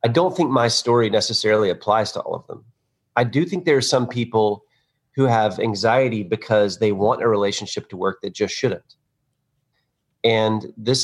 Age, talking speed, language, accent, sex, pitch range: 30-49, 180 wpm, English, American, male, 110-140 Hz